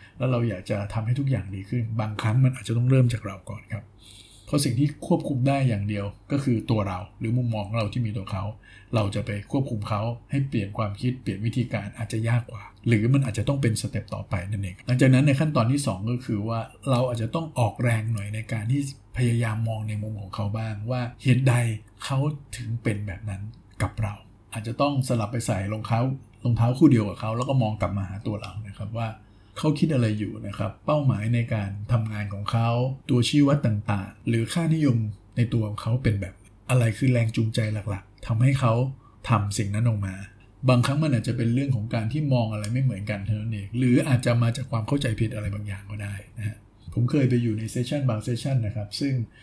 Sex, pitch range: male, 105-125 Hz